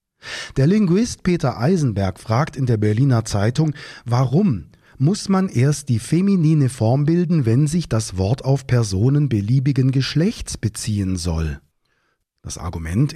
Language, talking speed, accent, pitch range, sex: German, 130 wpm, German, 110-145 Hz, male